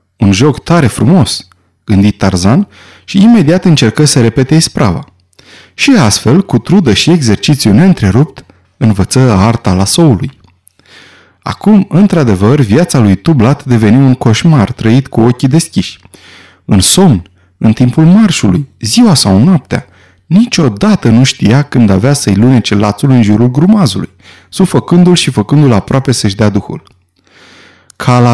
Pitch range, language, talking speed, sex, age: 105-160 Hz, Romanian, 130 wpm, male, 30-49